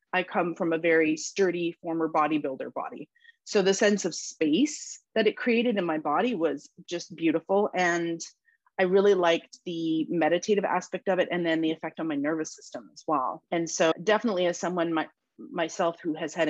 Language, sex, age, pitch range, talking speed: English, female, 30-49, 165-210 Hz, 185 wpm